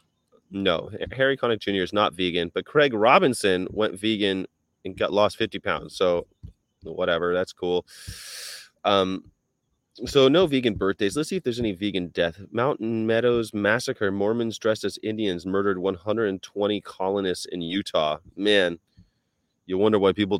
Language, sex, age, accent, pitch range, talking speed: English, male, 30-49, American, 95-120 Hz, 145 wpm